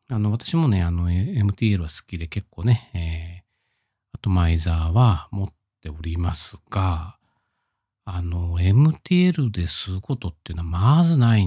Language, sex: Japanese, male